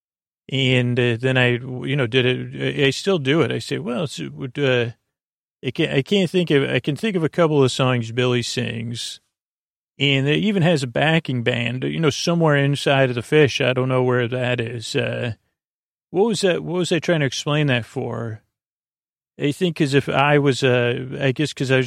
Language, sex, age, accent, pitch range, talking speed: English, male, 40-59, American, 125-145 Hz, 215 wpm